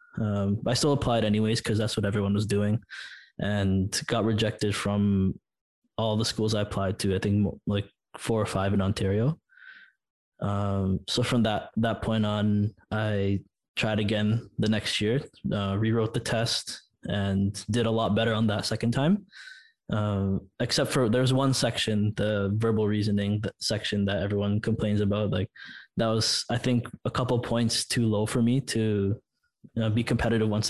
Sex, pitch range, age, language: male, 100-115 Hz, 20-39, English